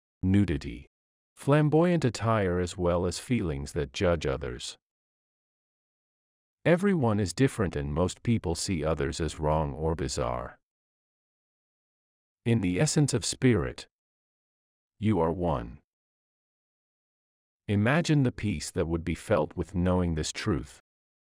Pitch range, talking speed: 75-110 Hz, 115 wpm